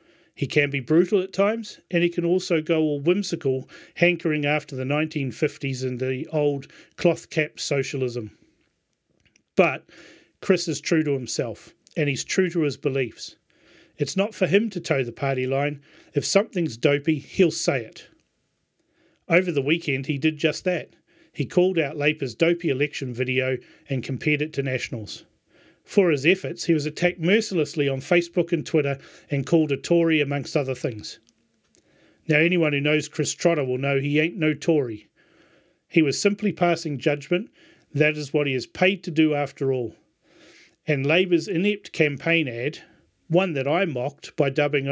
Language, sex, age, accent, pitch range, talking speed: English, male, 40-59, Australian, 140-170 Hz, 165 wpm